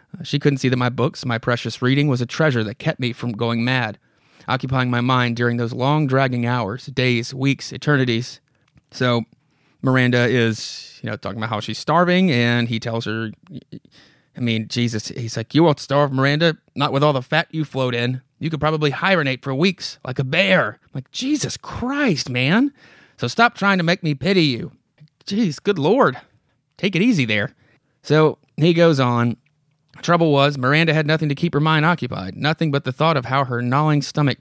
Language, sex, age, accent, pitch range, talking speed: English, male, 30-49, American, 120-155 Hz, 195 wpm